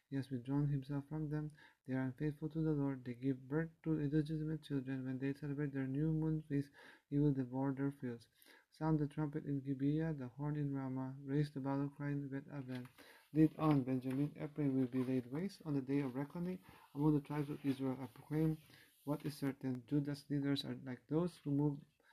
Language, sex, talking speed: English, male, 205 wpm